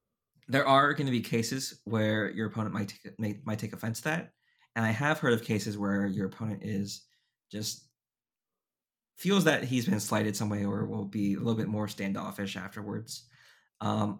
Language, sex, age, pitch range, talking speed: English, male, 20-39, 105-120 Hz, 190 wpm